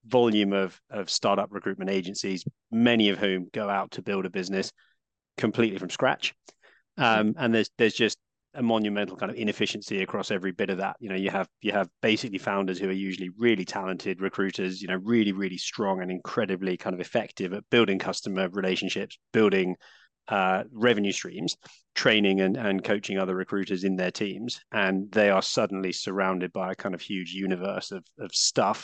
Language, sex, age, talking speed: English, male, 30-49, 185 wpm